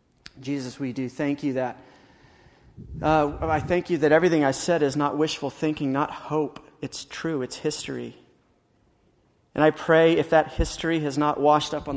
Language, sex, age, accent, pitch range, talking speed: English, male, 40-59, American, 130-150 Hz, 175 wpm